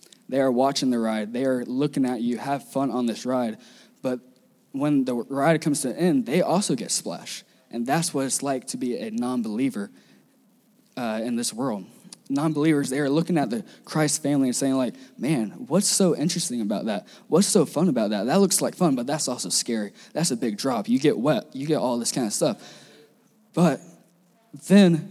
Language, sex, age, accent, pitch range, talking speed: English, male, 10-29, American, 130-180 Hz, 205 wpm